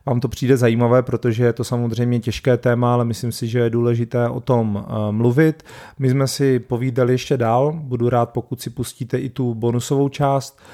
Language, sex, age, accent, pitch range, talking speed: Czech, male, 40-59, native, 115-130 Hz, 190 wpm